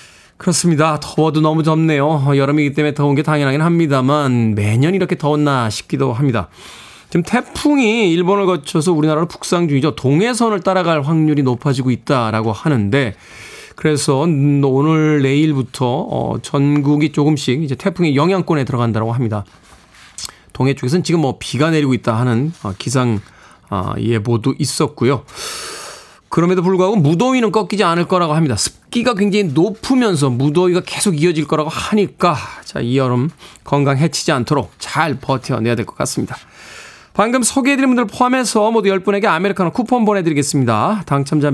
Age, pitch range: 20-39, 135-185 Hz